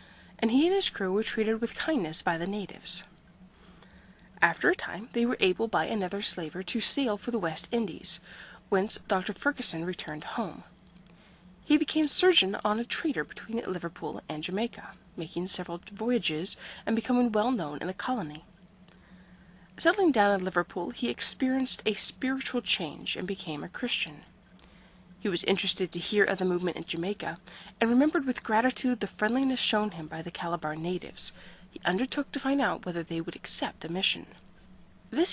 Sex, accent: female, American